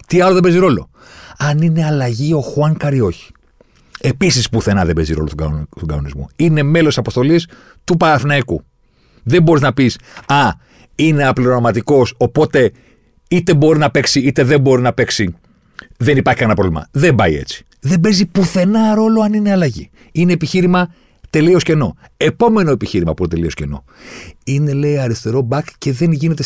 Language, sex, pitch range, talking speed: Greek, male, 115-180 Hz, 160 wpm